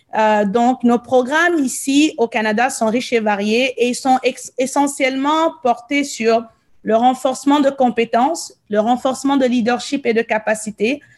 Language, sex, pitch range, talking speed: French, female, 230-275 Hz, 155 wpm